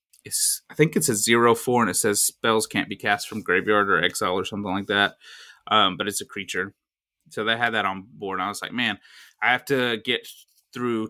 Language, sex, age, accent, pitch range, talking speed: English, male, 20-39, American, 100-125 Hz, 240 wpm